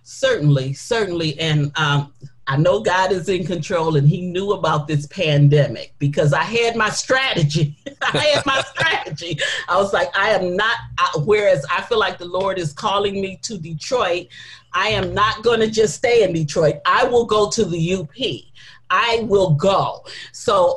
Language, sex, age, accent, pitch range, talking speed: English, male, 40-59, American, 145-215 Hz, 175 wpm